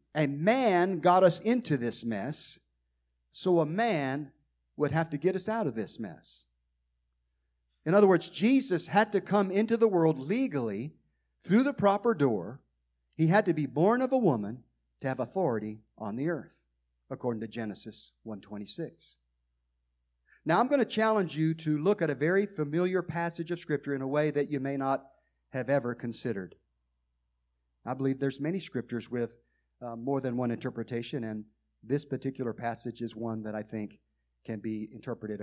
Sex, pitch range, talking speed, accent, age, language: male, 105-170 Hz, 170 wpm, American, 40-59, English